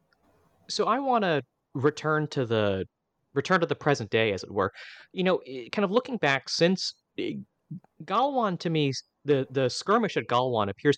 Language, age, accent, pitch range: English, 30-49, American, 100-135 Hz